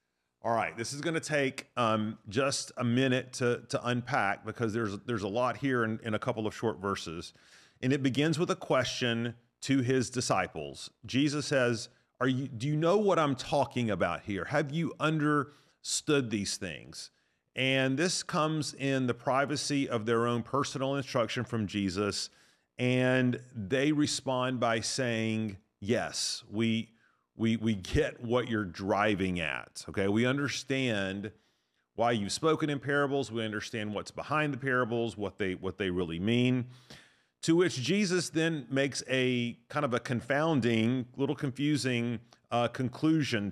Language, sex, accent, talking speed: English, male, American, 155 wpm